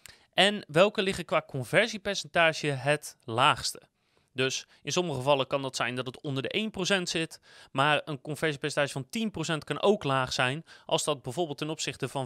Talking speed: 170 wpm